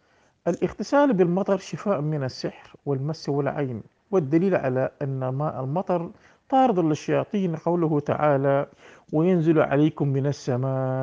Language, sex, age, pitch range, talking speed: Arabic, male, 50-69, 140-180 Hz, 110 wpm